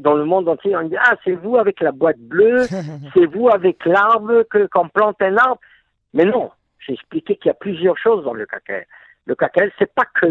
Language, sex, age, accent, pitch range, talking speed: French, male, 60-79, French, 140-225 Hz, 240 wpm